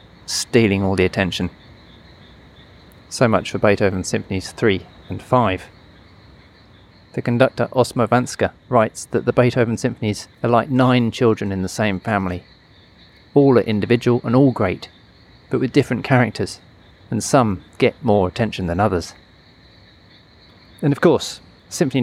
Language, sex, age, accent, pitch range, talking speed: English, male, 30-49, British, 100-125 Hz, 135 wpm